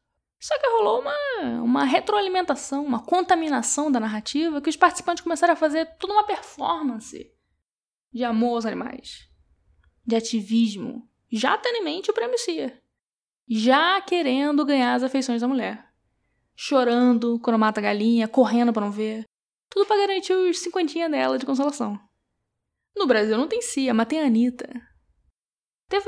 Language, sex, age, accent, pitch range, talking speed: Portuguese, female, 10-29, Brazilian, 230-345 Hz, 150 wpm